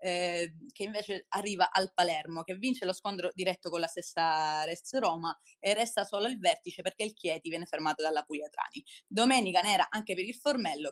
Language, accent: Italian, native